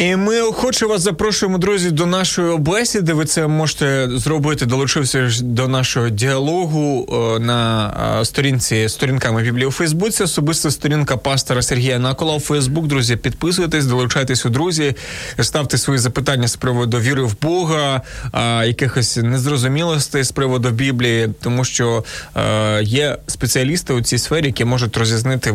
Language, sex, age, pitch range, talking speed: Ukrainian, male, 20-39, 125-155 Hz, 140 wpm